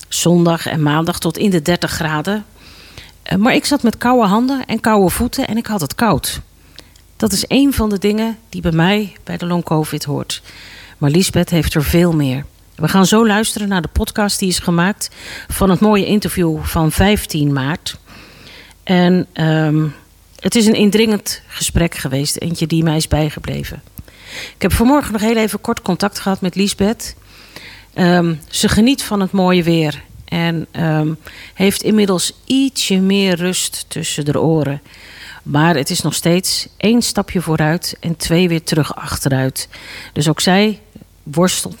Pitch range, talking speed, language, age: 155-205 Hz, 165 wpm, Dutch, 40-59